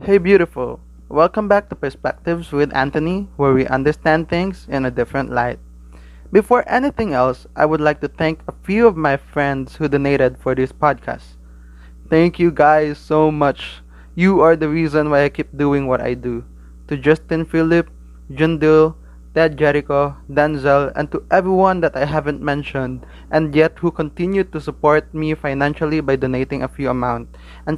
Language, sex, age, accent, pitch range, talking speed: Filipino, male, 20-39, native, 130-170 Hz, 170 wpm